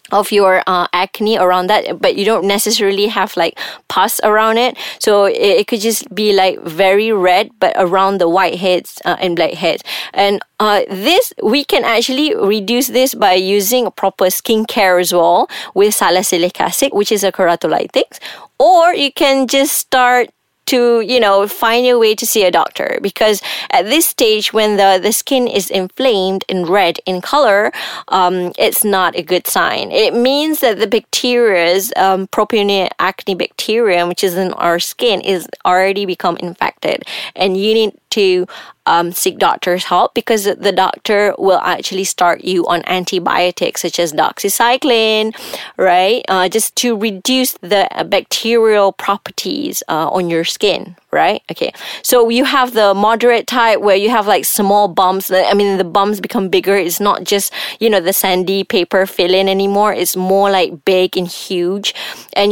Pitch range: 185-230 Hz